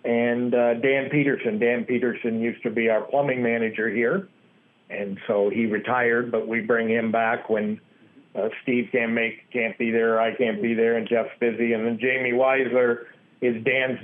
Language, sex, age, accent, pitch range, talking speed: English, male, 60-79, American, 115-130 Hz, 175 wpm